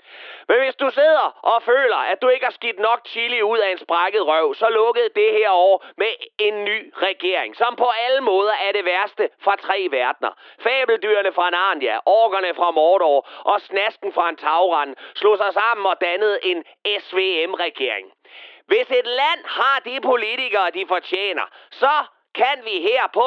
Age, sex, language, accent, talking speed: 30-49, male, Danish, native, 175 wpm